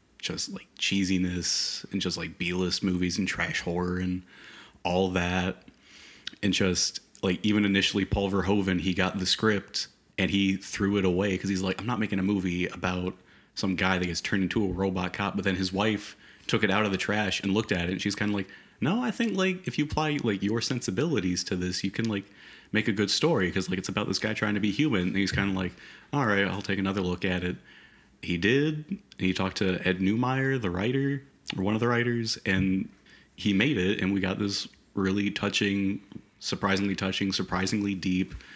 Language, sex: English, male